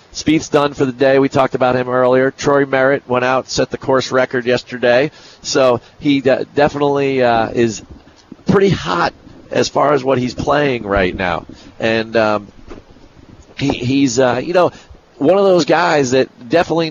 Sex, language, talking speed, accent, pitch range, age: male, English, 165 wpm, American, 115-135 Hz, 40-59